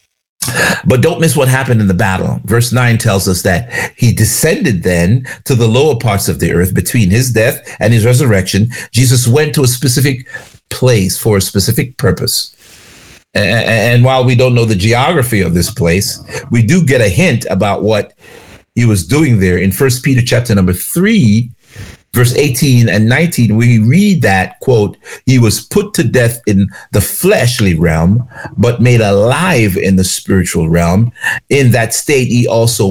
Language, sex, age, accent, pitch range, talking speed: English, male, 50-69, American, 100-125 Hz, 175 wpm